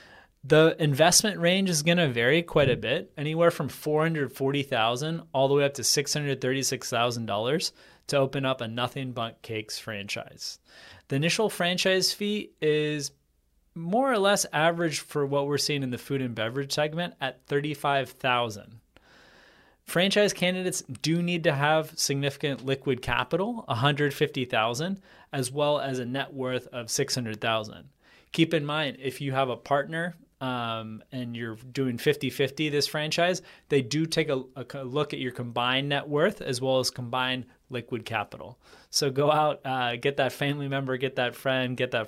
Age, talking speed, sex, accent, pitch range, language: 20-39, 155 wpm, male, American, 125-150 Hz, English